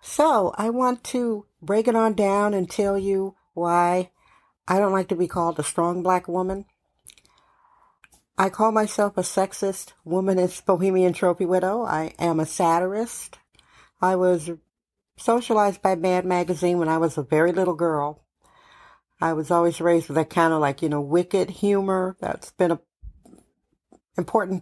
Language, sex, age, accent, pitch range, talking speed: English, female, 50-69, American, 170-200 Hz, 160 wpm